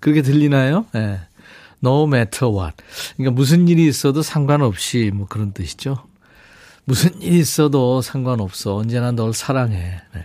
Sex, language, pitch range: male, Korean, 105-150 Hz